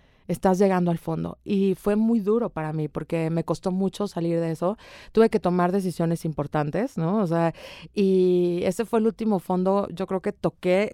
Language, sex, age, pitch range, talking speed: Spanish, female, 30-49, 180-230 Hz, 190 wpm